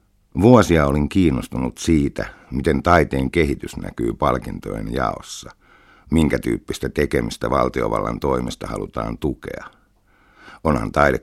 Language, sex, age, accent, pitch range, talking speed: Finnish, male, 60-79, native, 65-75 Hz, 100 wpm